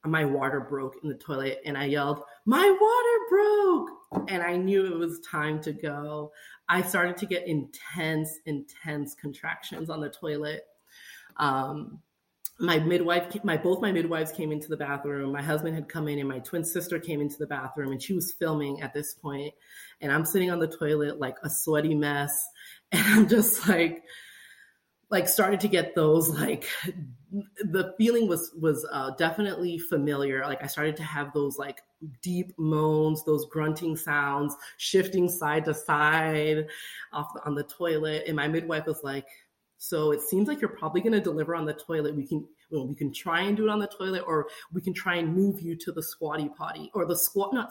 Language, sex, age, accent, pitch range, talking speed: English, female, 30-49, American, 150-180 Hz, 190 wpm